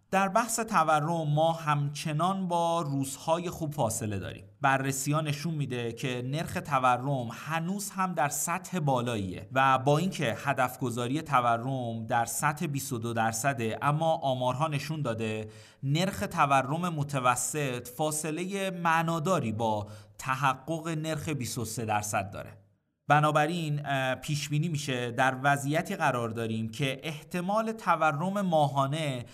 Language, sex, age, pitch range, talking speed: Persian, male, 30-49, 120-160 Hz, 115 wpm